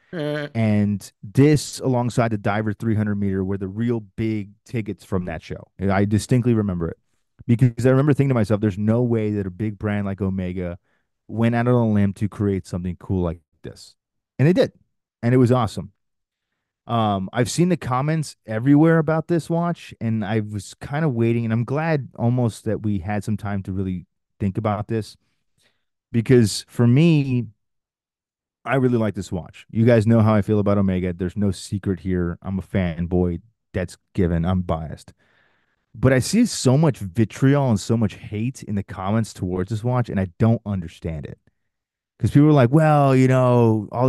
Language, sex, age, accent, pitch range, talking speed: English, male, 30-49, American, 95-120 Hz, 185 wpm